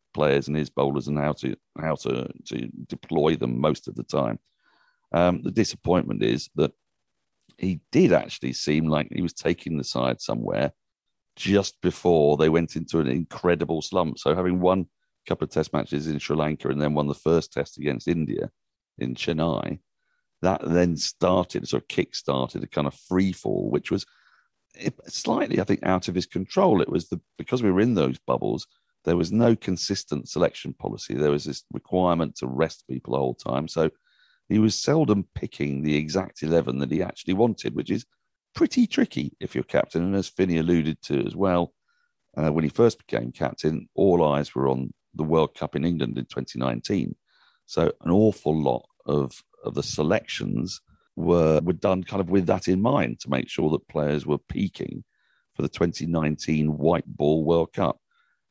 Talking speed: 185 wpm